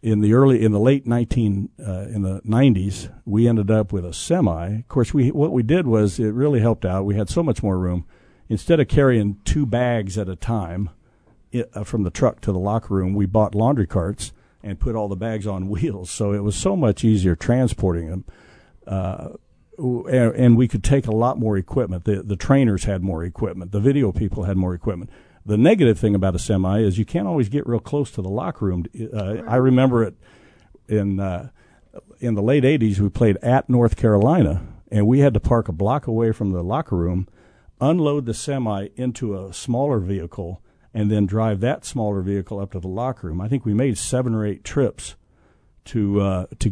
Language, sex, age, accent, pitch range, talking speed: English, male, 60-79, American, 95-120 Hz, 210 wpm